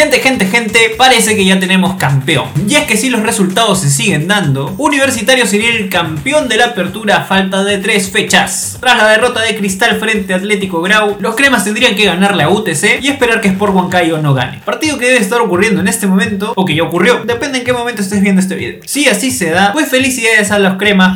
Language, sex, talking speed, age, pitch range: Spanish, male, 230 wpm, 20-39, 165-225 Hz